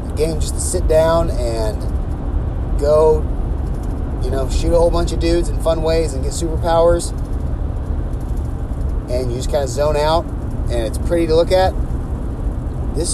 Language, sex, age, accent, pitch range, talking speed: English, male, 30-49, American, 85-115 Hz, 155 wpm